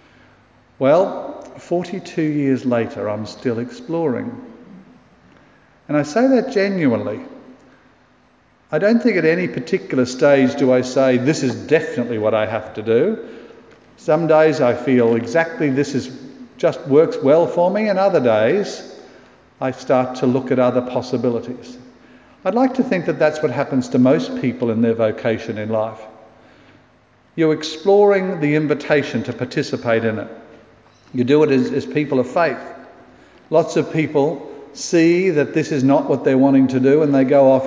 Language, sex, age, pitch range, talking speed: English, male, 50-69, 125-185 Hz, 160 wpm